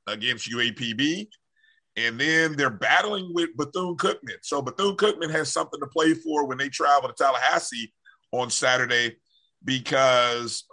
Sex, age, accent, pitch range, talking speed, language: male, 50-69, American, 125-160 Hz, 140 wpm, English